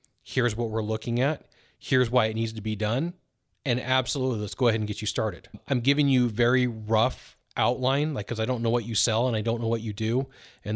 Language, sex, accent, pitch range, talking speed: English, male, American, 115-155 Hz, 240 wpm